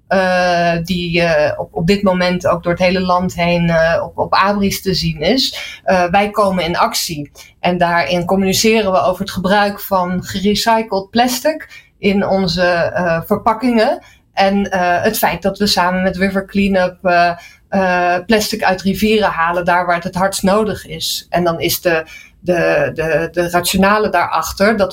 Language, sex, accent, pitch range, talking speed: Dutch, female, Dutch, 175-205 Hz, 175 wpm